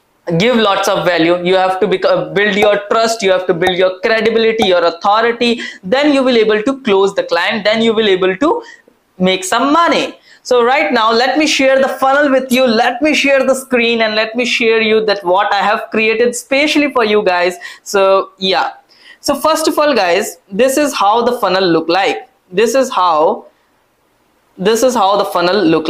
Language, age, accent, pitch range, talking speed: English, 20-39, Indian, 195-265 Hz, 200 wpm